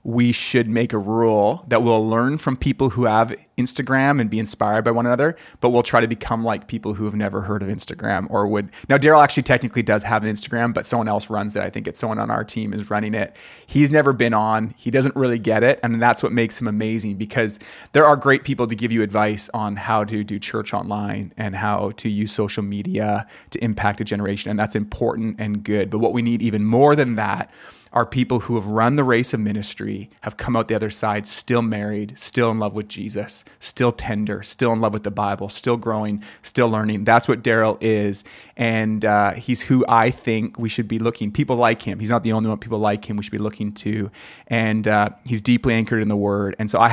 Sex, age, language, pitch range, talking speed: male, 20-39, English, 105-120 Hz, 235 wpm